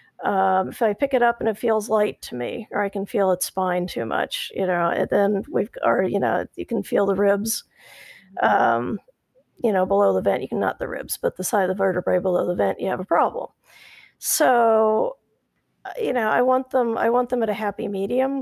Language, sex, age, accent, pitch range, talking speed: English, female, 40-59, American, 190-235 Hz, 230 wpm